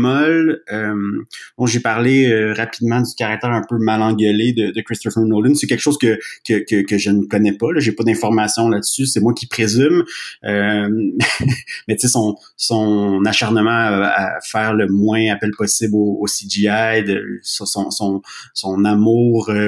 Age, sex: 30-49, male